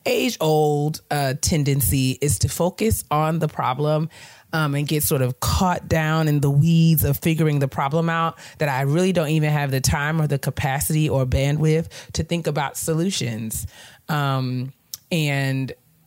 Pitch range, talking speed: 135-155 Hz, 160 wpm